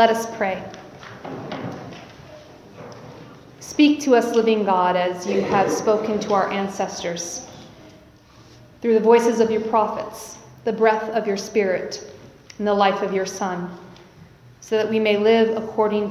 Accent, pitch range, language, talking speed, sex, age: American, 200-245 Hz, English, 140 wpm, female, 40-59